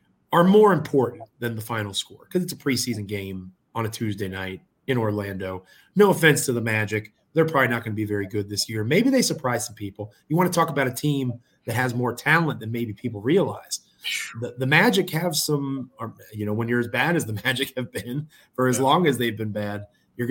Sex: male